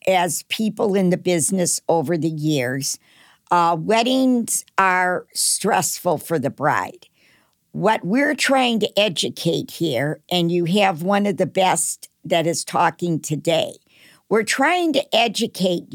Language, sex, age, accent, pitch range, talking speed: English, female, 60-79, American, 175-225 Hz, 135 wpm